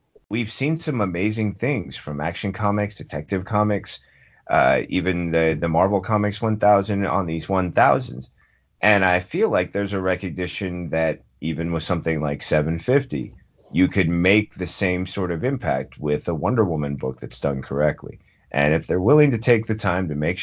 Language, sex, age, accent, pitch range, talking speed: English, male, 30-49, American, 75-100 Hz, 175 wpm